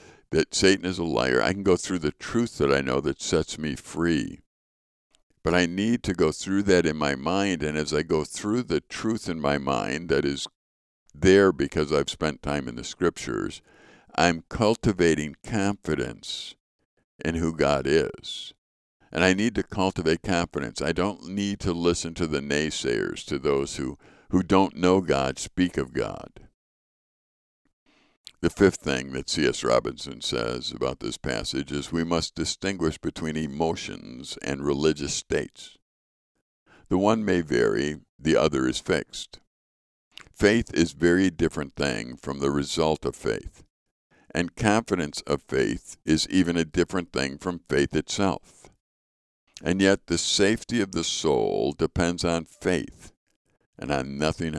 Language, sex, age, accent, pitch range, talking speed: English, male, 50-69, American, 70-95 Hz, 155 wpm